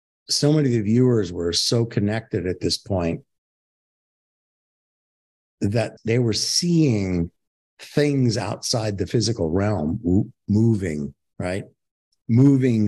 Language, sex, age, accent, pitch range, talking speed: English, male, 50-69, American, 90-125 Hz, 105 wpm